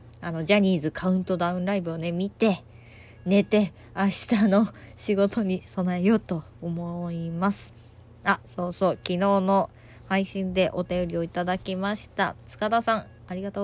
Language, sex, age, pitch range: Japanese, female, 20-39, 160-205 Hz